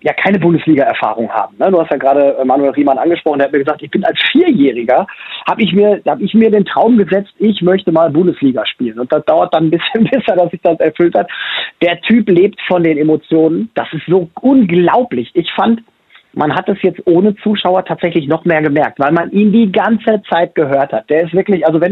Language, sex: German, male